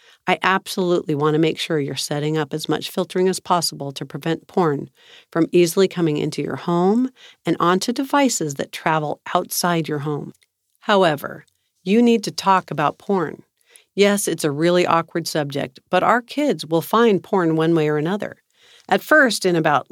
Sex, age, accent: female, 50-69, American